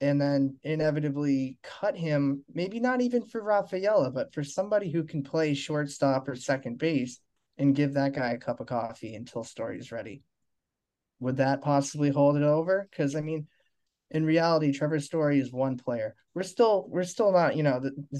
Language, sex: English, male